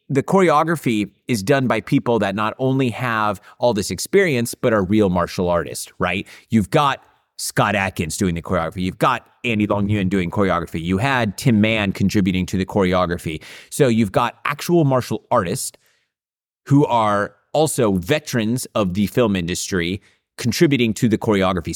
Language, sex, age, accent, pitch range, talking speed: English, male, 30-49, American, 95-115 Hz, 165 wpm